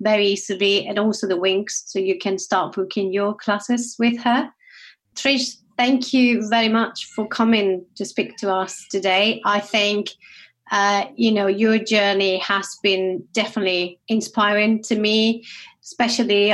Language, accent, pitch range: English, British, 190-220 Hz